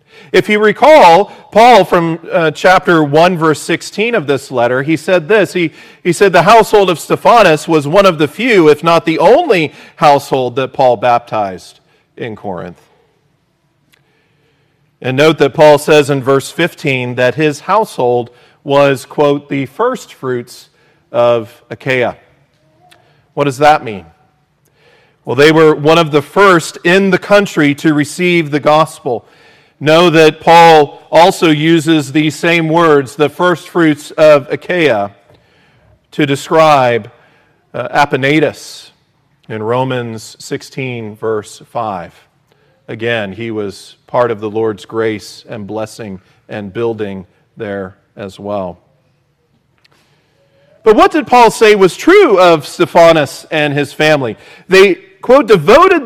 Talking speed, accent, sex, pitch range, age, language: 135 wpm, American, male, 135-170 Hz, 40-59, English